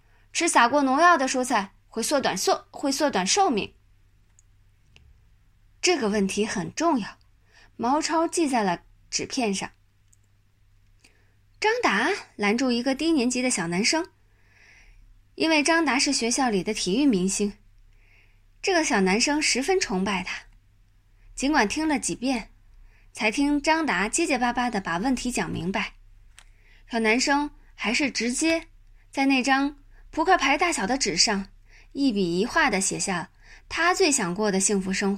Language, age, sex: Chinese, 20-39, female